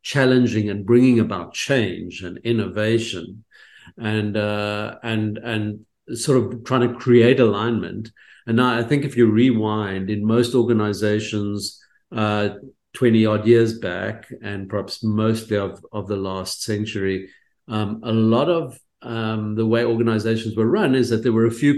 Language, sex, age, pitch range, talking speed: English, male, 50-69, 100-120 Hz, 155 wpm